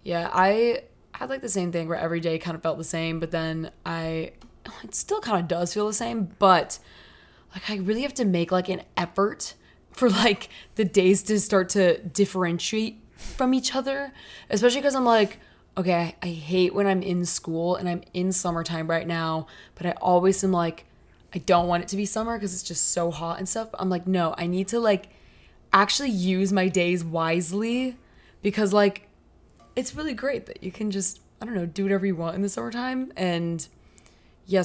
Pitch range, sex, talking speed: 170-205 Hz, female, 200 wpm